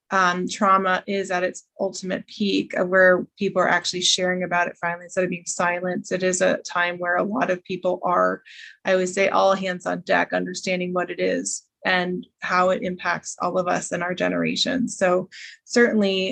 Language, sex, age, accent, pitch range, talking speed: English, female, 20-39, American, 185-215 Hz, 195 wpm